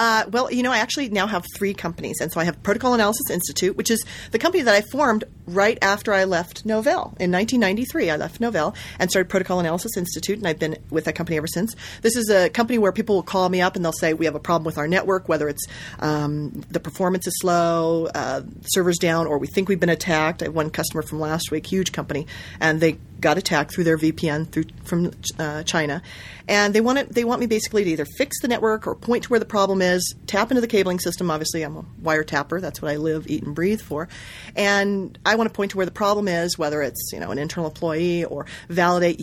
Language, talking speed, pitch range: English, 245 wpm, 155-200 Hz